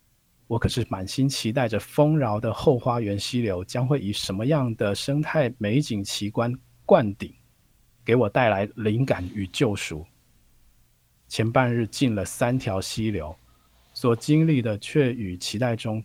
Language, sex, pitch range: Chinese, male, 105-135 Hz